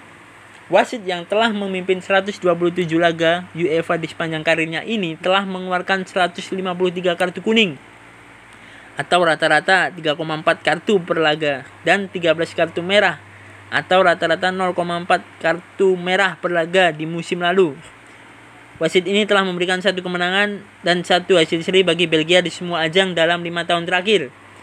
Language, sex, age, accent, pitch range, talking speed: Indonesian, male, 20-39, native, 160-195 Hz, 135 wpm